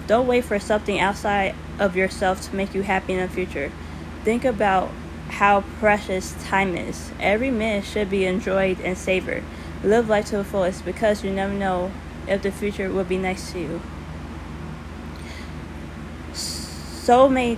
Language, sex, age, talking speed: English, female, 20-39, 155 wpm